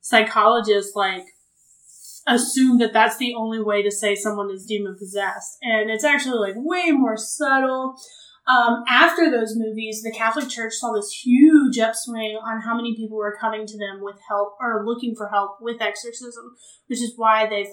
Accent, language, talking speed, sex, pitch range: American, English, 175 wpm, female, 205-255 Hz